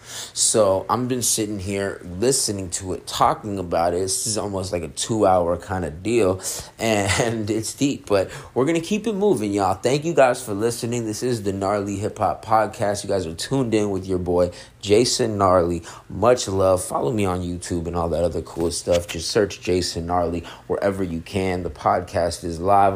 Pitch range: 95-125 Hz